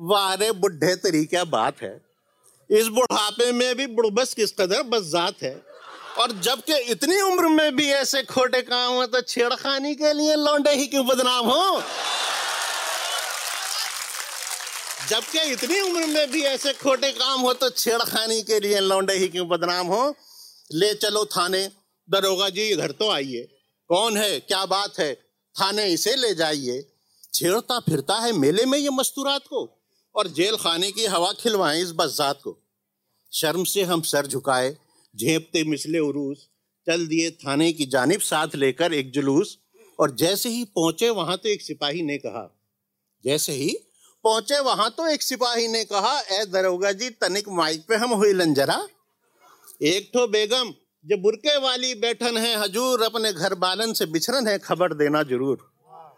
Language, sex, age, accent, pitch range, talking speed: Hindi, male, 50-69, native, 175-255 Hz, 160 wpm